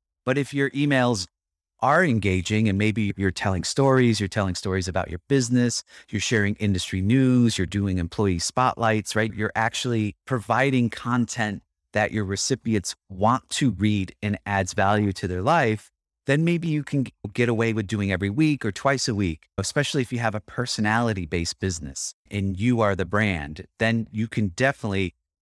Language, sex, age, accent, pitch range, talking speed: English, male, 30-49, American, 100-135 Hz, 170 wpm